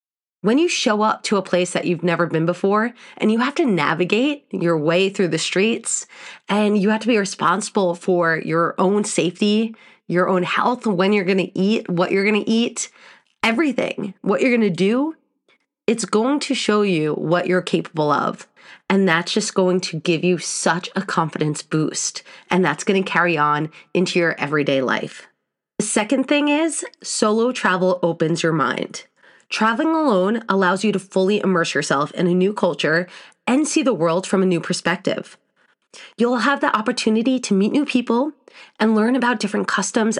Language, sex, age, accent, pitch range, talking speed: English, female, 20-39, American, 170-225 Hz, 180 wpm